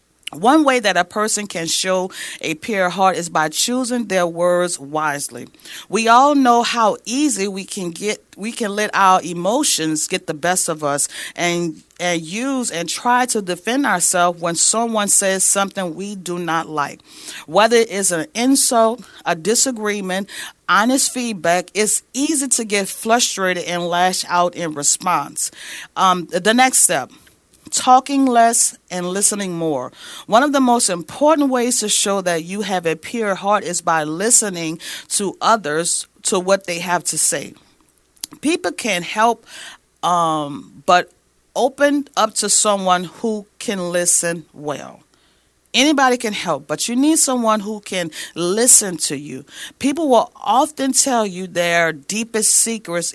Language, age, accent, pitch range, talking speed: English, 40-59, American, 175-230 Hz, 150 wpm